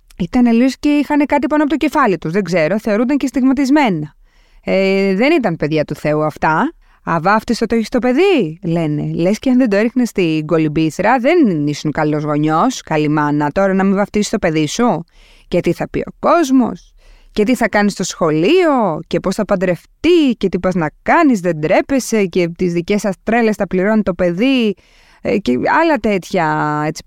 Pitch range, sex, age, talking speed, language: 175-265 Hz, female, 20-39, 190 wpm, Greek